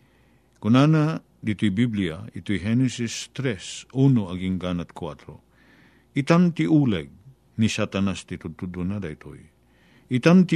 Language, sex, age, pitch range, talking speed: Filipino, male, 50-69, 100-130 Hz, 100 wpm